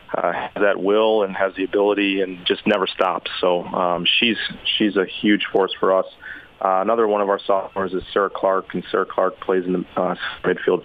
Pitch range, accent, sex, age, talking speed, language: 90-95 Hz, American, male, 30-49, 205 wpm, English